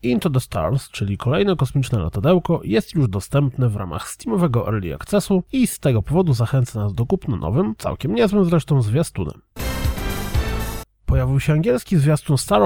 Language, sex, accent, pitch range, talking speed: Polish, male, native, 115-165 Hz, 155 wpm